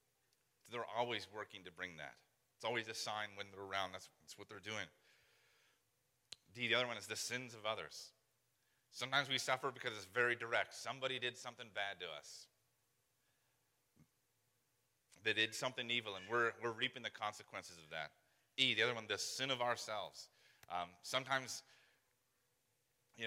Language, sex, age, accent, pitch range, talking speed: English, male, 30-49, American, 110-130 Hz, 160 wpm